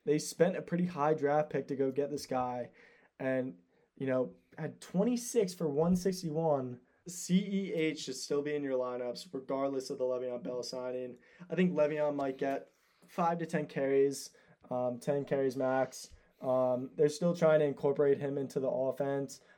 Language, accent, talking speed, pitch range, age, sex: English, American, 170 wpm, 130-160 Hz, 20-39, male